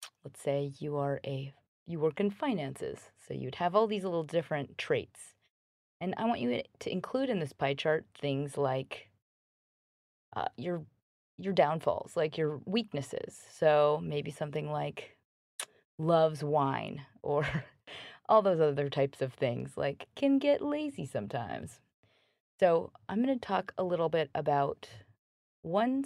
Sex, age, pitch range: female, 20-39, 140-175 Hz